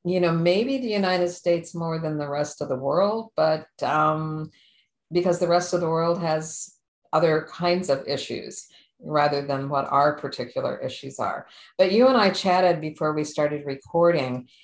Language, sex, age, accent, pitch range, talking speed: English, female, 50-69, American, 150-180 Hz, 170 wpm